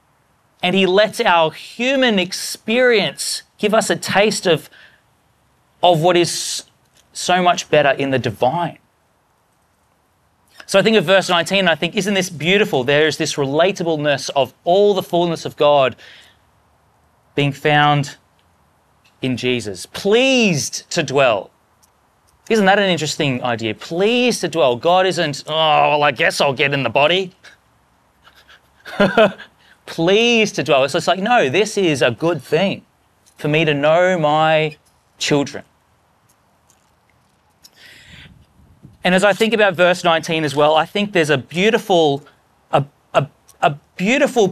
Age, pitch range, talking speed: 30-49, 145-190 Hz, 140 wpm